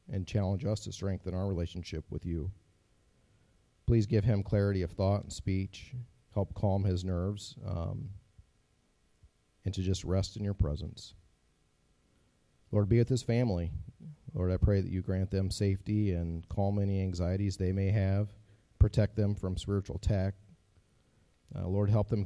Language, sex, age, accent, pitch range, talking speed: English, male, 40-59, American, 85-100 Hz, 155 wpm